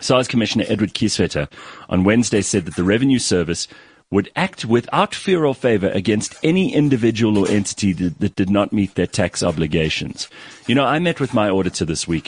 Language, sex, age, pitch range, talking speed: English, male, 30-49, 85-120 Hz, 190 wpm